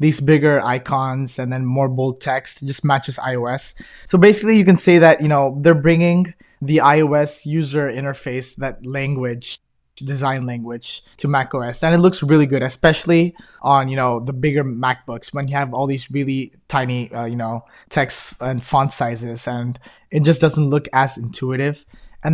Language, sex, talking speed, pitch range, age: English, male, 175 wpm, 130-155 Hz, 20-39